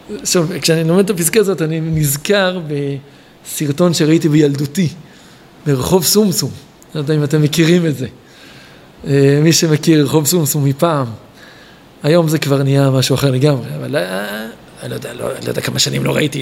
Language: Hebrew